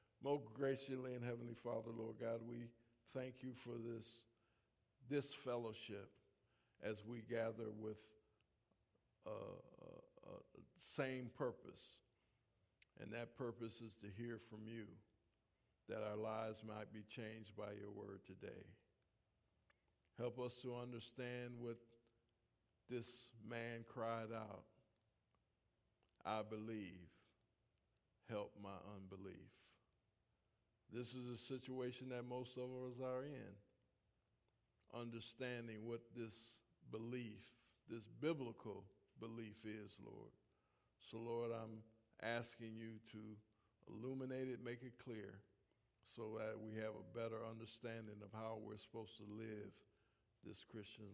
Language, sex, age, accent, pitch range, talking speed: English, male, 50-69, American, 110-120 Hz, 115 wpm